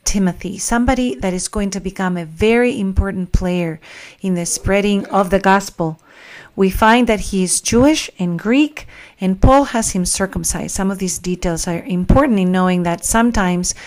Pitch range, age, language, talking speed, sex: 185-230 Hz, 40-59, English, 175 wpm, female